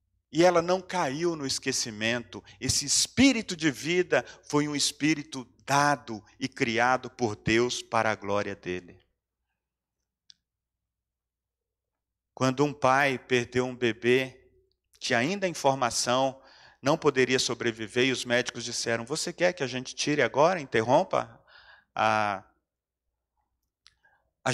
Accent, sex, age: Brazilian, male, 40-59